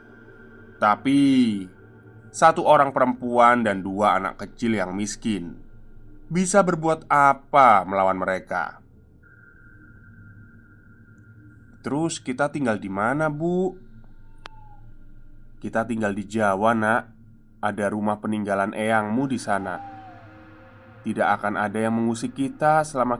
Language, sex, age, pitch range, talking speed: Indonesian, male, 20-39, 105-135 Hz, 100 wpm